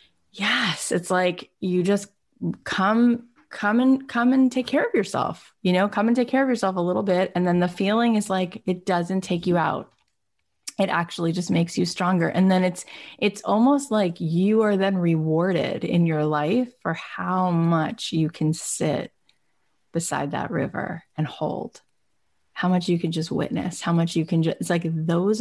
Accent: American